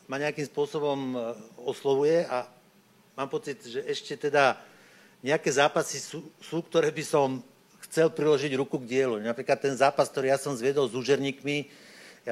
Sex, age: male, 60-79